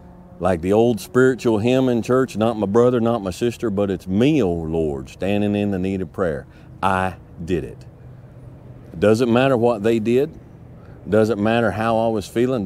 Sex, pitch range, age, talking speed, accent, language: male, 95-125 Hz, 40-59, 180 wpm, American, English